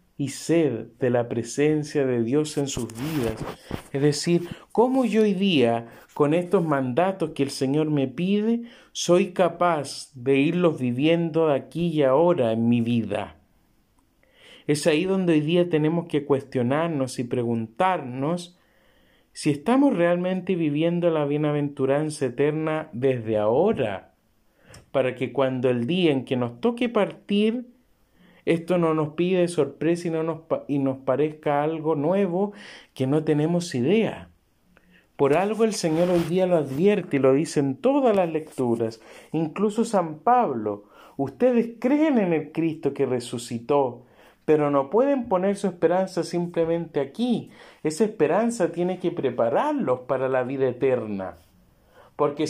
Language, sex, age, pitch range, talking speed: Spanish, male, 50-69, 135-185 Hz, 140 wpm